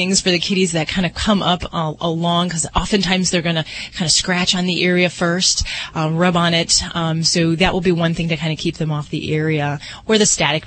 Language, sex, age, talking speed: English, female, 30-49, 245 wpm